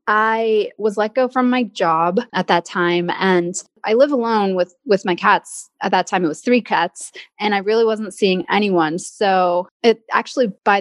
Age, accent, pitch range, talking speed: 20-39, American, 185-225 Hz, 195 wpm